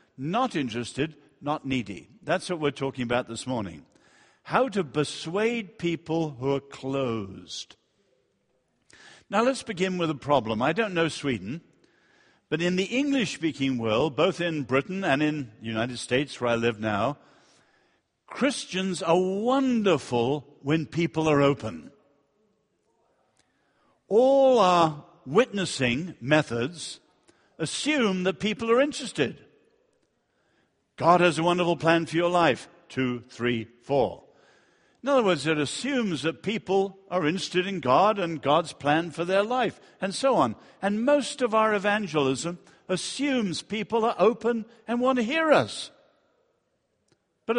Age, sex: 60-79, male